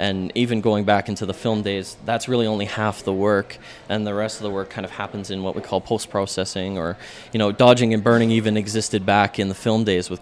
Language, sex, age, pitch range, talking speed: English, male, 20-39, 95-110 Hz, 245 wpm